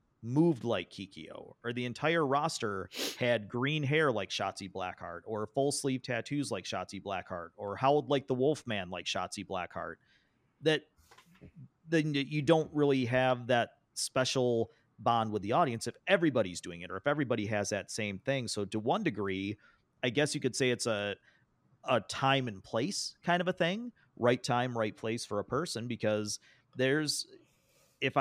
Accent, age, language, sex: American, 30-49, English, male